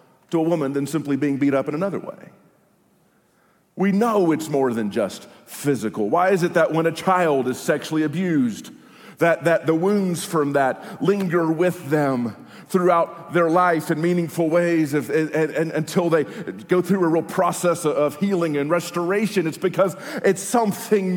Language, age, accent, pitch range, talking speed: English, 40-59, American, 160-195 Hz, 180 wpm